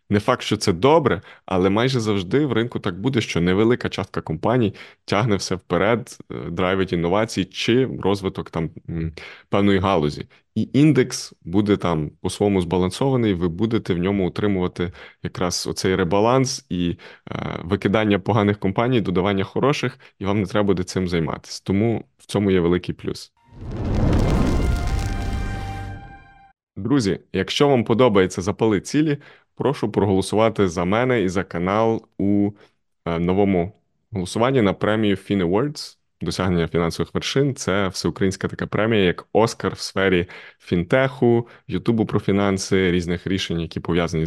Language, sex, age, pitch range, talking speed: Ukrainian, male, 20-39, 90-110 Hz, 135 wpm